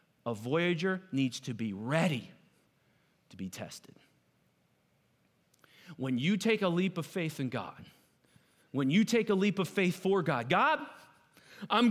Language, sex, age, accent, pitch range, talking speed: English, male, 40-59, American, 150-210 Hz, 145 wpm